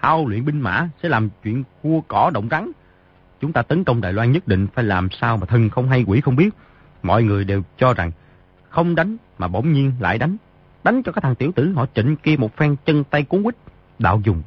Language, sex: Vietnamese, male